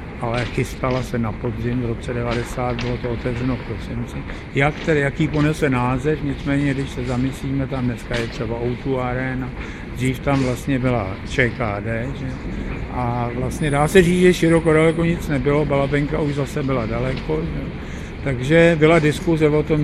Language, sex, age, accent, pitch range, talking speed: Czech, male, 60-79, native, 125-150 Hz, 165 wpm